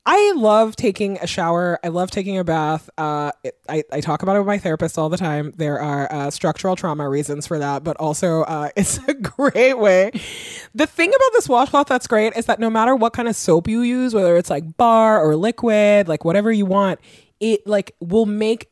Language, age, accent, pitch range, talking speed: English, 20-39, American, 165-225 Hz, 220 wpm